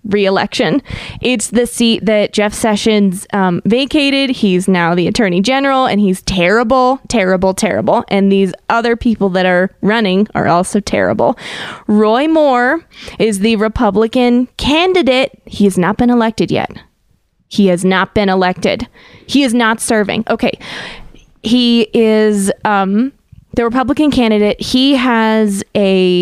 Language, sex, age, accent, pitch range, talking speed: English, female, 20-39, American, 185-225 Hz, 135 wpm